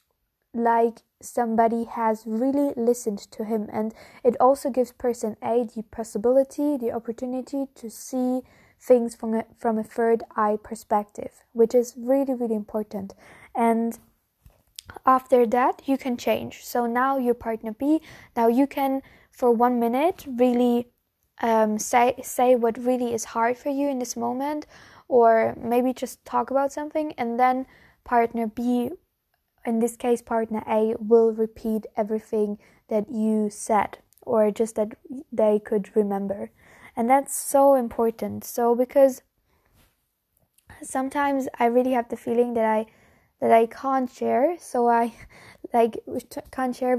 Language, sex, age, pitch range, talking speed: English, female, 20-39, 225-260 Hz, 140 wpm